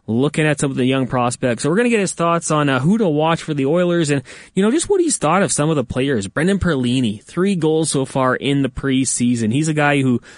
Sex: male